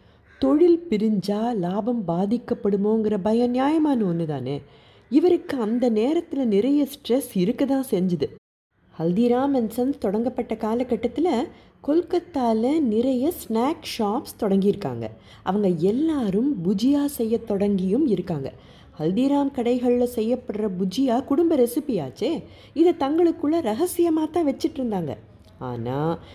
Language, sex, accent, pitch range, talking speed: Tamil, female, native, 195-275 Hz, 100 wpm